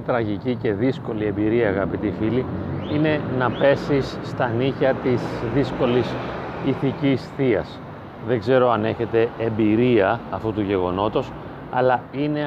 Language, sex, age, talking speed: Greek, male, 40-59, 120 wpm